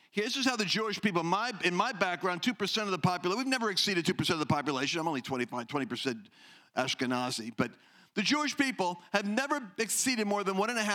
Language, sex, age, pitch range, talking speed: English, male, 50-69, 185-255 Hz, 195 wpm